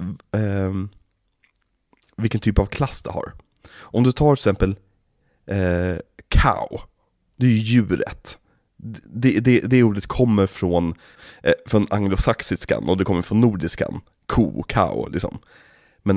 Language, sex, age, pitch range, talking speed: Swedish, male, 30-49, 95-115 Hz, 135 wpm